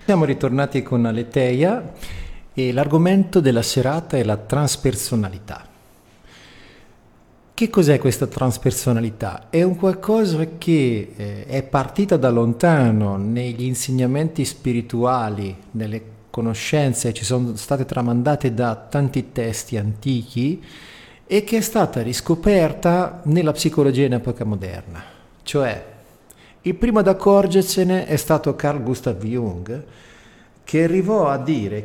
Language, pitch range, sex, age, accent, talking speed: Italian, 115-160 Hz, male, 40-59, native, 115 wpm